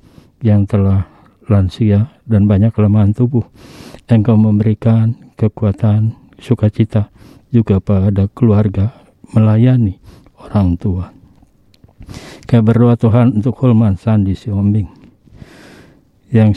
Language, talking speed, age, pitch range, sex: Indonesian, 85 wpm, 50-69, 100-115 Hz, male